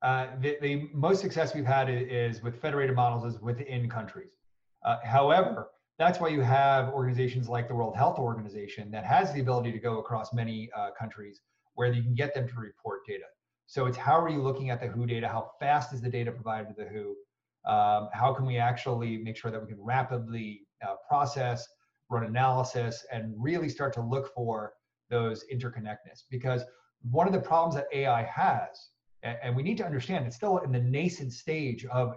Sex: male